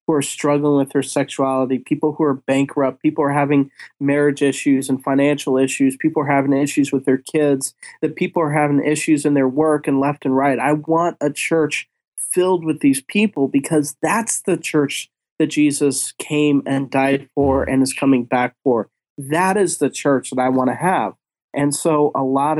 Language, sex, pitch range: English, male, 135-155 Hz